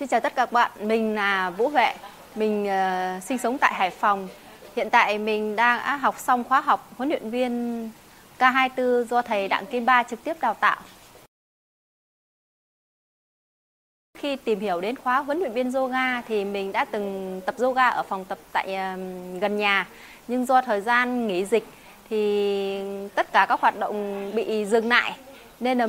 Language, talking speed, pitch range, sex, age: Vietnamese, 175 wpm, 210-265 Hz, female, 20-39